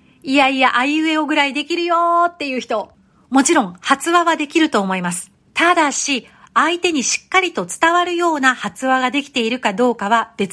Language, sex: Japanese, female